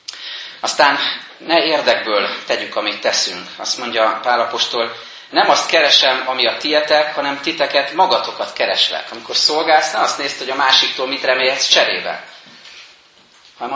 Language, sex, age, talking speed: Hungarian, male, 30-49, 135 wpm